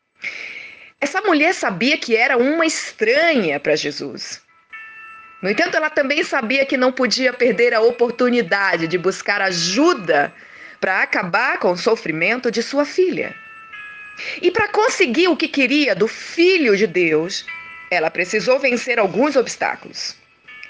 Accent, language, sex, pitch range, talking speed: Brazilian, Portuguese, female, 230-370 Hz, 135 wpm